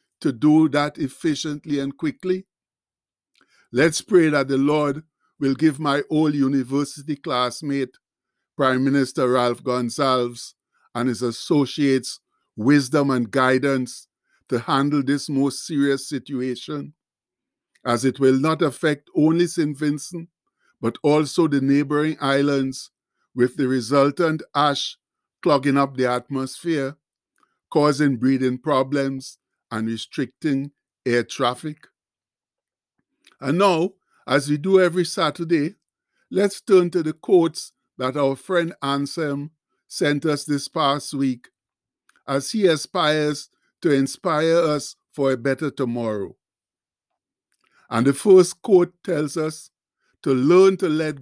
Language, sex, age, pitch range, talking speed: English, male, 60-79, 135-160 Hz, 120 wpm